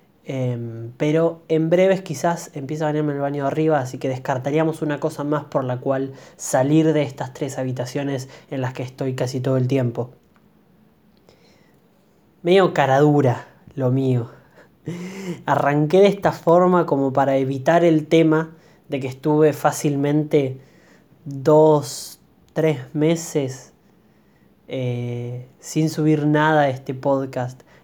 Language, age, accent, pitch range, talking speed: Spanish, 20-39, Argentinian, 135-165 Hz, 130 wpm